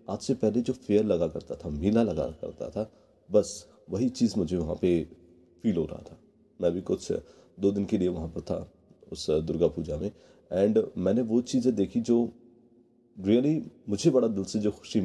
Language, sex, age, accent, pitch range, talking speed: English, male, 40-59, Indian, 90-120 Hz, 195 wpm